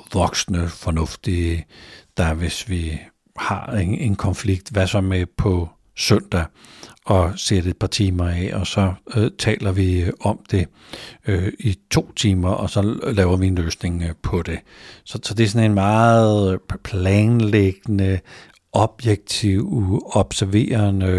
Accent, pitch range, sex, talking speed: native, 95-115 Hz, male, 140 wpm